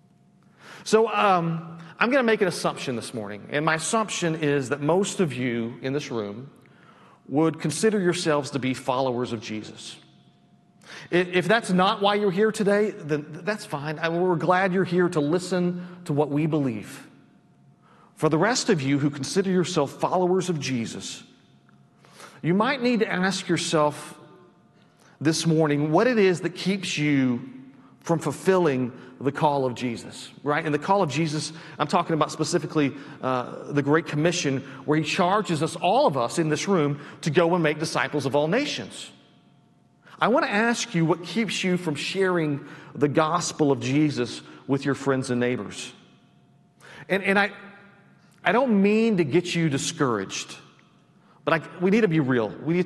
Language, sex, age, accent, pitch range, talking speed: English, male, 40-59, American, 140-185 Hz, 170 wpm